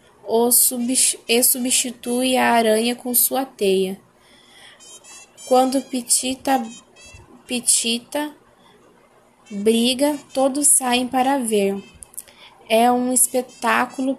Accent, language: Brazilian, Portuguese